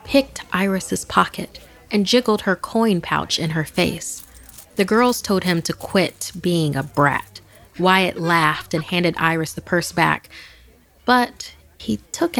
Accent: American